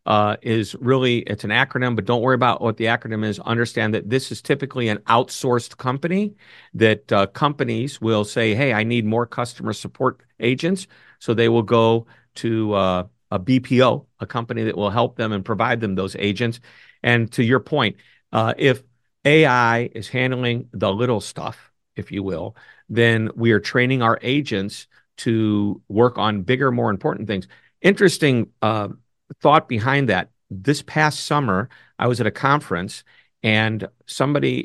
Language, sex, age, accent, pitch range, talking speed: English, male, 50-69, American, 110-130 Hz, 165 wpm